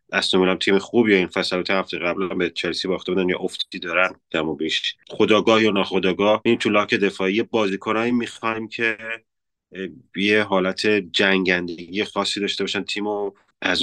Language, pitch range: Persian, 90-105 Hz